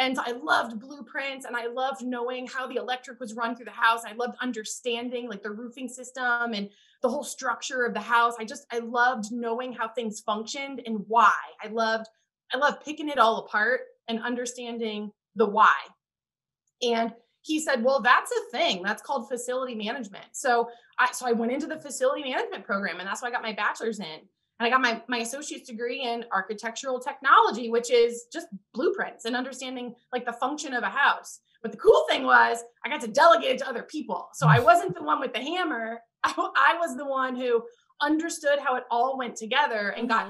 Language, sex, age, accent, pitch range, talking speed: English, female, 20-39, American, 230-265 Hz, 205 wpm